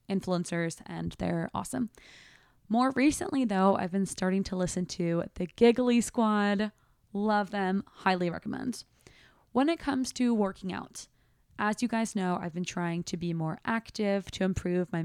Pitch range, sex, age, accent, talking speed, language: 180-240 Hz, female, 20-39, American, 160 wpm, English